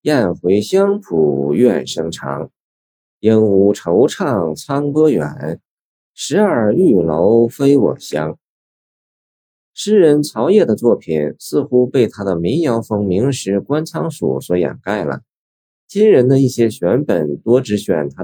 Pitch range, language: 90-145 Hz, Chinese